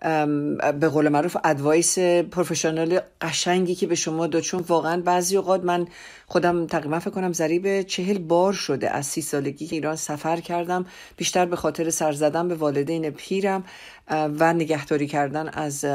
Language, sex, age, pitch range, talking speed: Persian, female, 50-69, 150-175 Hz, 160 wpm